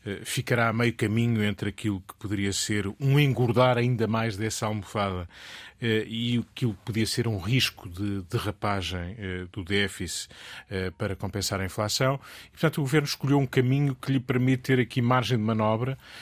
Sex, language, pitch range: male, Portuguese, 100-125 Hz